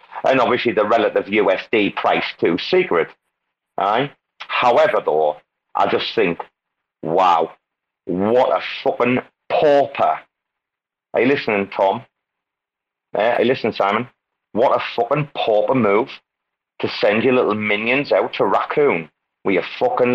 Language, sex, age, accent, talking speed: English, male, 40-59, British, 125 wpm